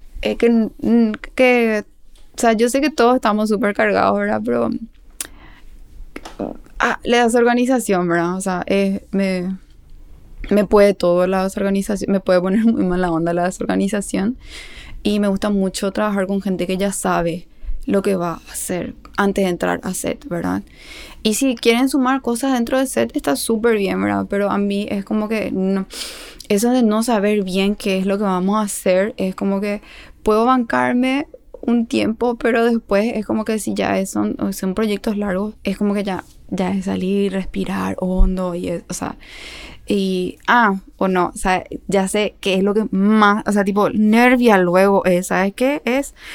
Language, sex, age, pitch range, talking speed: Spanish, female, 20-39, 190-235 Hz, 185 wpm